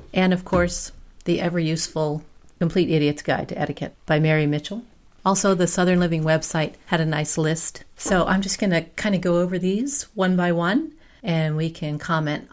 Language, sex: English, female